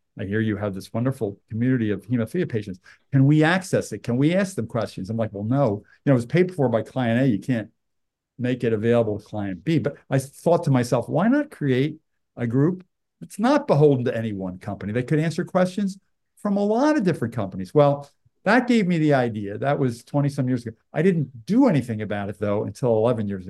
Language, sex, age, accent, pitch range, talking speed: English, male, 50-69, American, 115-150 Hz, 225 wpm